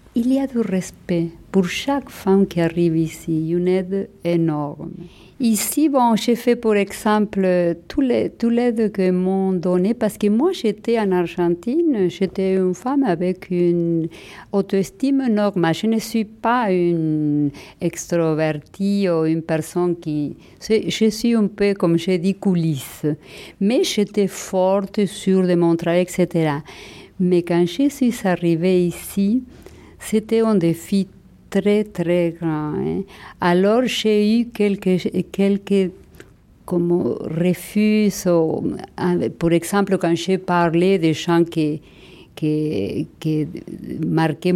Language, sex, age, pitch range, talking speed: French, female, 50-69, 165-200 Hz, 130 wpm